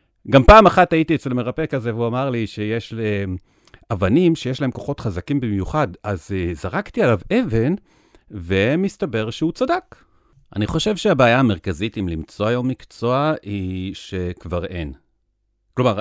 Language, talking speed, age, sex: Hebrew, 135 wpm, 60-79, male